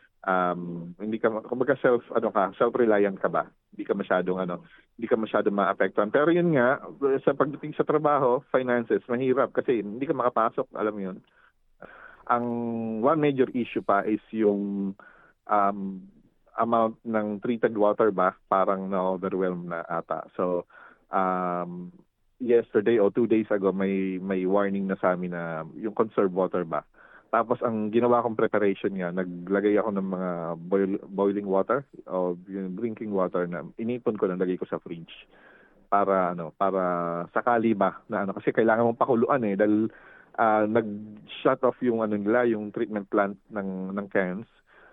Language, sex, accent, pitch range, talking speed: Filipino, male, native, 90-110 Hz, 160 wpm